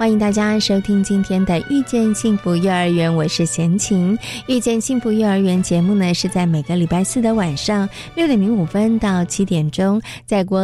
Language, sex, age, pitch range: Chinese, female, 20-39, 180-240 Hz